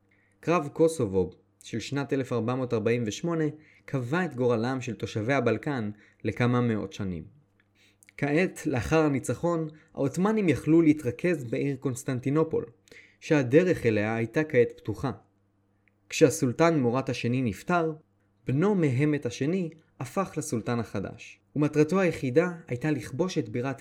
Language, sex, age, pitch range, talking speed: Hebrew, male, 20-39, 110-155 Hz, 110 wpm